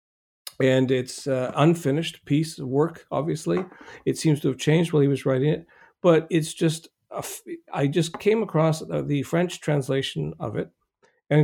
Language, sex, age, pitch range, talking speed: English, male, 40-59, 135-160 Hz, 175 wpm